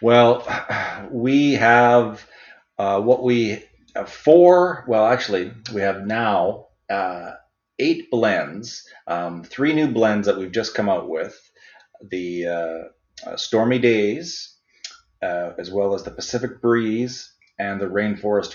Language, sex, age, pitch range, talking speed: English, male, 40-59, 95-120 Hz, 135 wpm